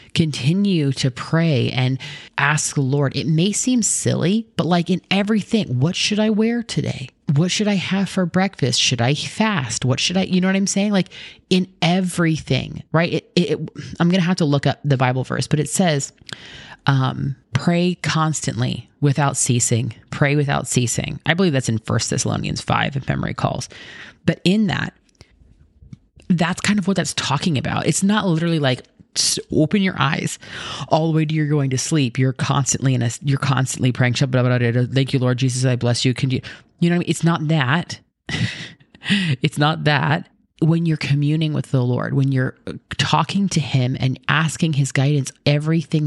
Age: 30-49